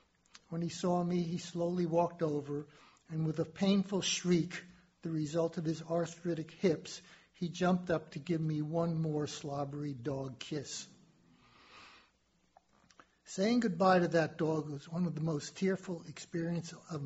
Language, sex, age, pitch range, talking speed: English, male, 60-79, 150-180 Hz, 150 wpm